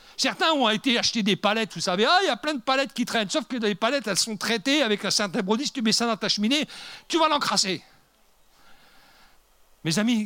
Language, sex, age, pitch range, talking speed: French, male, 50-69, 165-255 Hz, 230 wpm